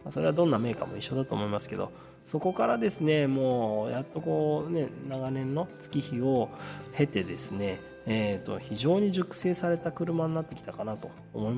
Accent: native